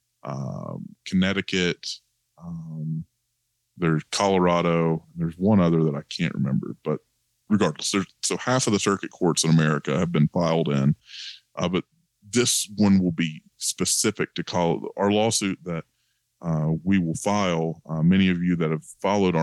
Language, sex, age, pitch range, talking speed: English, male, 20-39, 80-90 Hz, 150 wpm